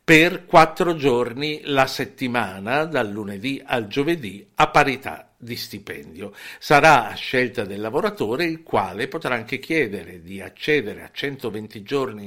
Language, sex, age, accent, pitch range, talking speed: Italian, male, 60-79, native, 110-155 Hz, 135 wpm